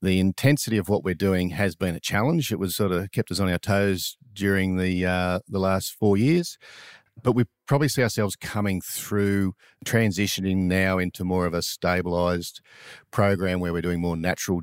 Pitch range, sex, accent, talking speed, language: 90-105 Hz, male, Australian, 190 wpm, English